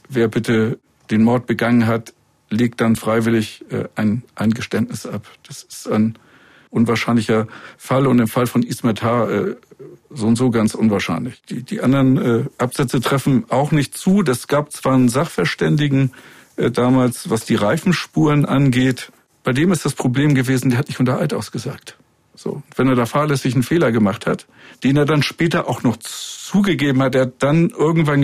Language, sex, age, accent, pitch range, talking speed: German, male, 50-69, German, 120-140 Hz, 175 wpm